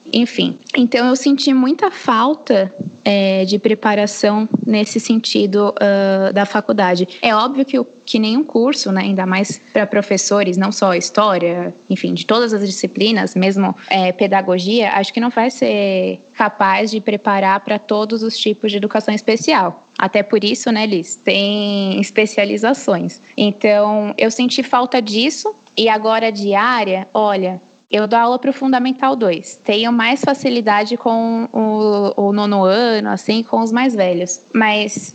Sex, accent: female, Brazilian